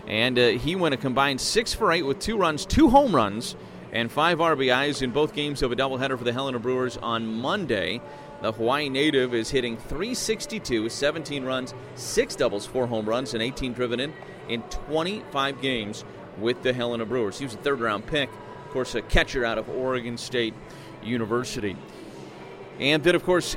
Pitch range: 120-145 Hz